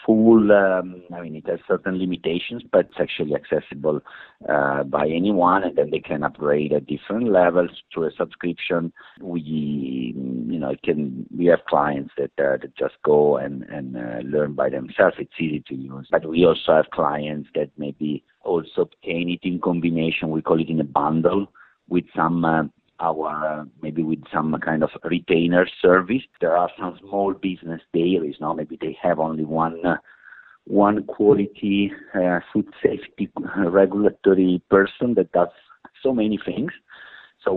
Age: 50-69